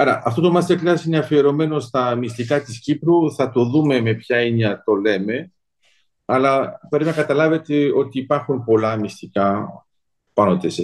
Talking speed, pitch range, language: 155 wpm, 115-145 Hz, Greek